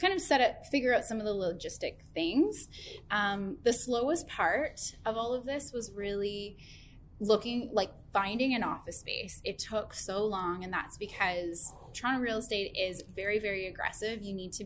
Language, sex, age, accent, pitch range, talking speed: English, female, 10-29, American, 190-240 Hz, 180 wpm